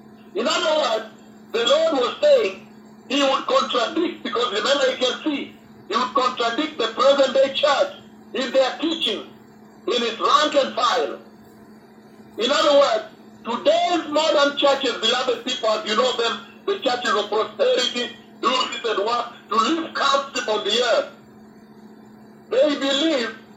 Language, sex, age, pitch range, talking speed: English, male, 50-69, 240-300 Hz, 145 wpm